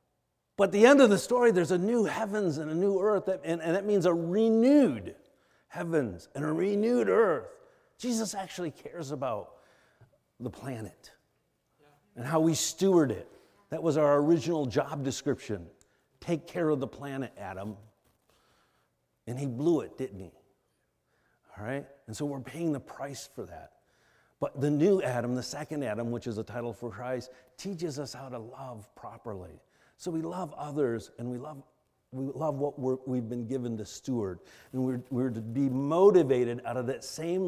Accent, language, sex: American, English, male